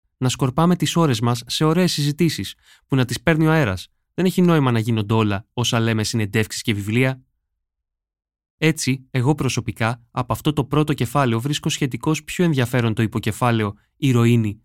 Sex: male